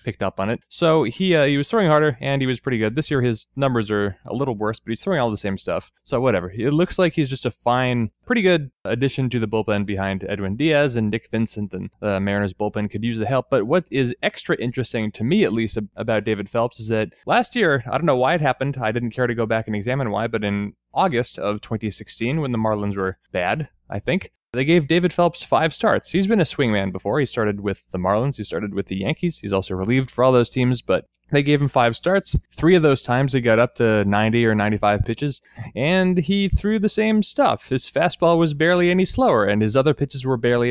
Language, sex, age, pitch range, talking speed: English, male, 20-39, 110-145 Hz, 245 wpm